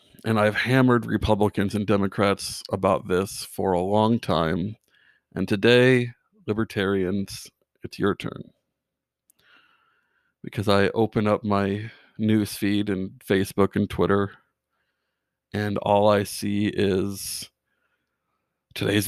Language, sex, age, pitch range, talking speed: English, male, 50-69, 100-120 Hz, 110 wpm